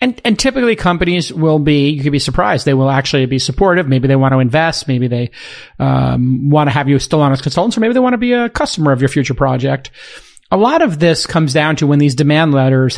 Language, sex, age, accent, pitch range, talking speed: English, male, 40-59, American, 140-190 Hz, 255 wpm